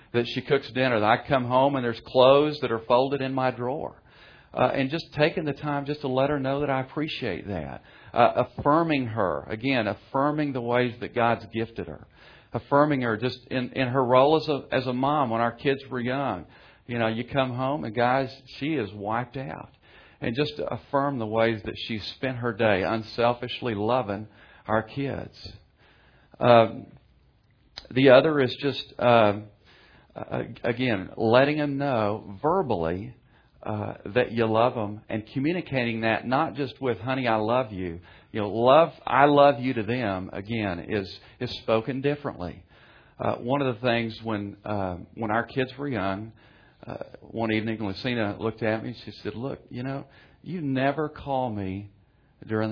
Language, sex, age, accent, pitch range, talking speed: English, male, 50-69, American, 110-135 Hz, 175 wpm